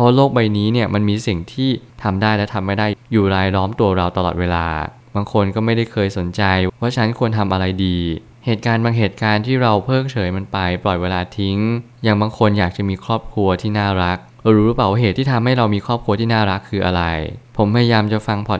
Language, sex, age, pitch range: Thai, male, 20-39, 95-120 Hz